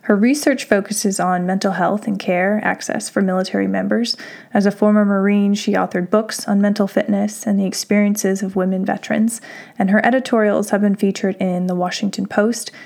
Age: 20-39